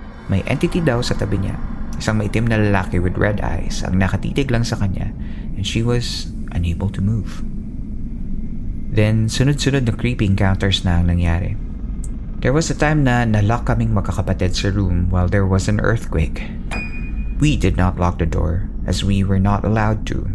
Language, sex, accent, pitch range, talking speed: Filipino, male, native, 90-115 Hz, 170 wpm